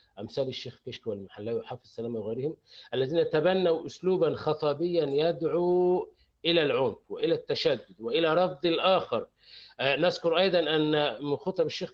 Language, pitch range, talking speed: Arabic, 150-210 Hz, 120 wpm